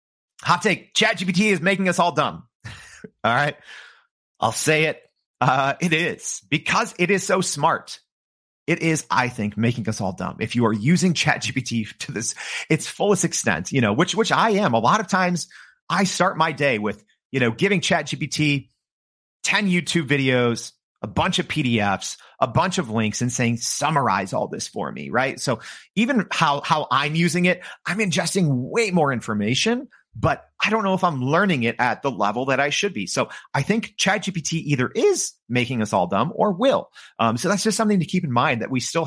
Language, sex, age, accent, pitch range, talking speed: English, male, 30-49, American, 120-180 Hz, 200 wpm